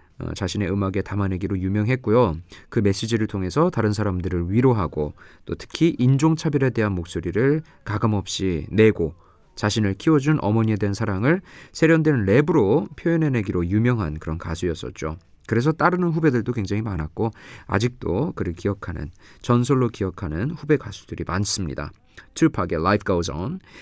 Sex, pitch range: male, 90-140 Hz